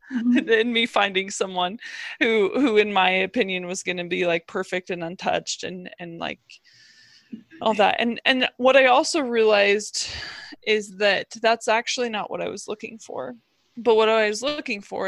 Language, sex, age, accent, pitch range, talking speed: English, female, 20-39, American, 185-230 Hz, 175 wpm